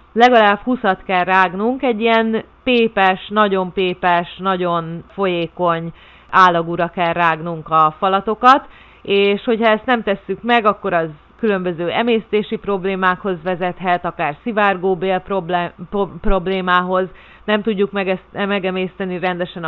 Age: 30-49